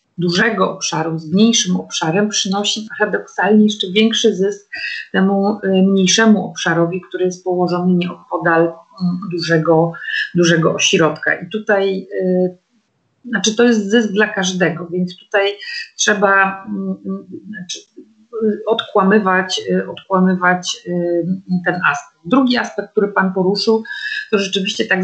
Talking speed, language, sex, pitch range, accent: 115 wpm, Polish, female, 175-210 Hz, native